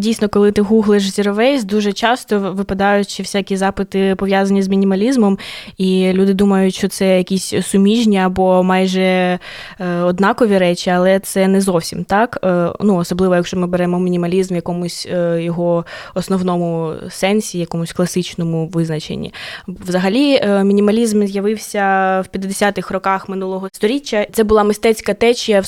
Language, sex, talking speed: Ukrainian, female, 130 wpm